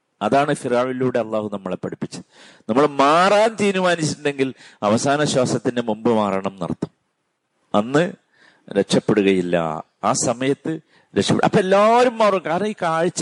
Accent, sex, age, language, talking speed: native, male, 50-69, Malayalam, 110 wpm